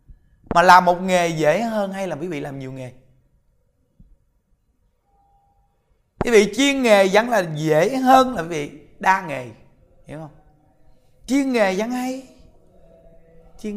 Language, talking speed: Vietnamese, 145 wpm